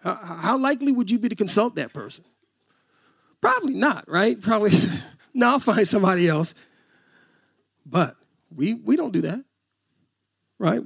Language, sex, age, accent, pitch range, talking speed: English, male, 40-59, American, 155-215 Hz, 140 wpm